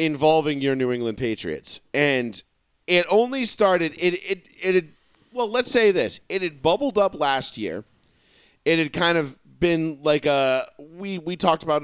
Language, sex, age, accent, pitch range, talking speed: English, male, 40-59, American, 130-180 Hz, 170 wpm